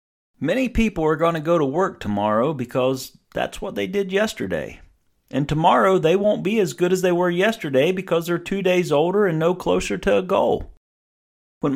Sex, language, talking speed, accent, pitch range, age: male, English, 195 wpm, American, 130-185 Hz, 40-59